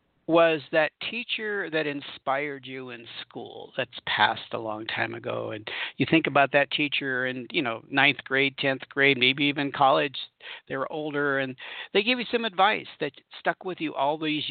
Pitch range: 130-170 Hz